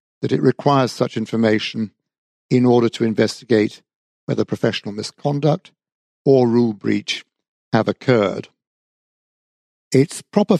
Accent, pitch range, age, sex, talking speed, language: British, 110-140 Hz, 50-69, male, 100 wpm, English